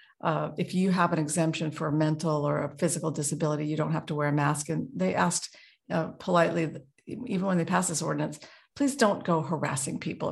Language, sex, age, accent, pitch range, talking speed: English, female, 50-69, American, 155-185 Hz, 210 wpm